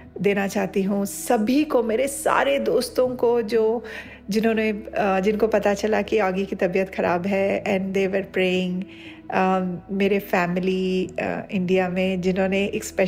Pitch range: 185-215 Hz